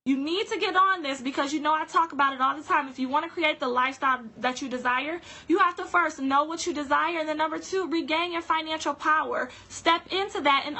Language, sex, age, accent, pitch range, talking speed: English, female, 20-39, American, 265-330 Hz, 250 wpm